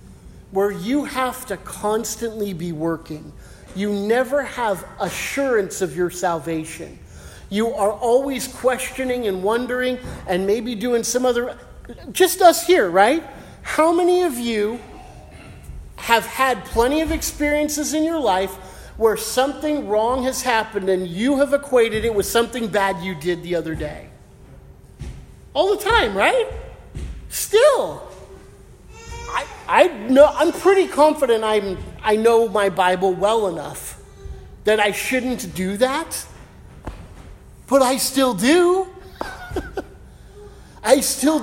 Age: 40-59